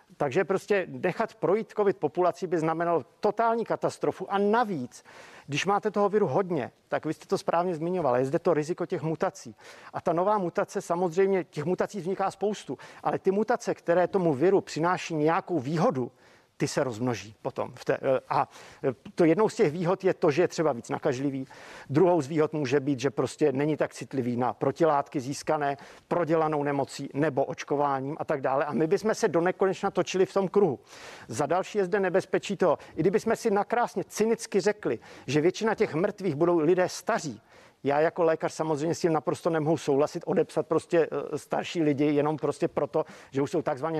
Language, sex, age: Czech, male, 50-69